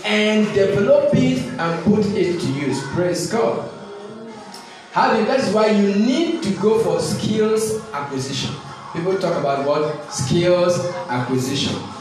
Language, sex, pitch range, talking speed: English, male, 165-225 Hz, 135 wpm